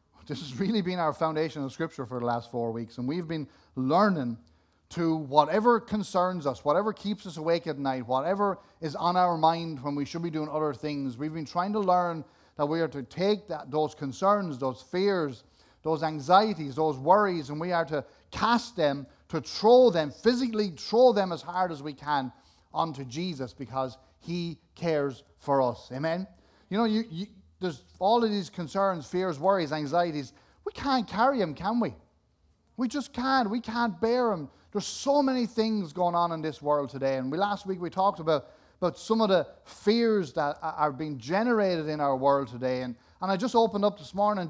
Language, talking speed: English, 195 wpm